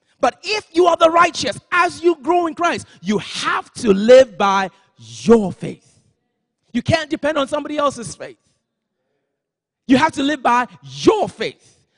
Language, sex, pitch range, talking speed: English, male, 205-260 Hz, 160 wpm